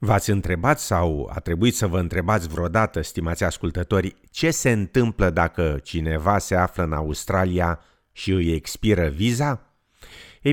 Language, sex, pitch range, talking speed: Romanian, male, 85-115 Hz, 140 wpm